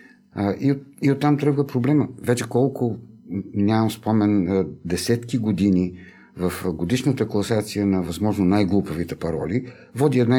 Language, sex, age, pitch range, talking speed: Bulgarian, male, 50-69, 100-125 Hz, 110 wpm